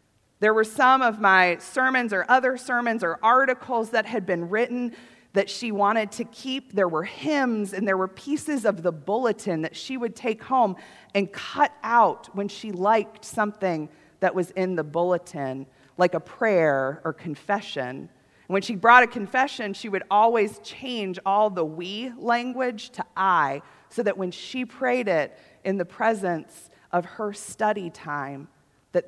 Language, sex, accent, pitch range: English, female, American, 175-230 Hz